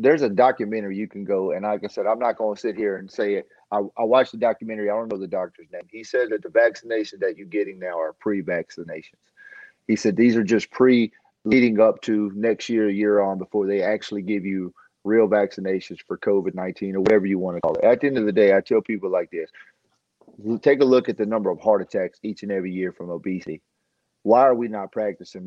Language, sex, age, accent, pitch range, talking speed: English, male, 40-59, American, 105-130 Hz, 235 wpm